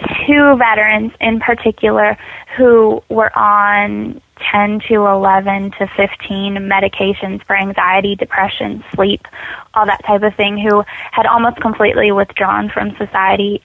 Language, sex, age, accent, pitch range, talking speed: English, female, 10-29, American, 200-230 Hz, 125 wpm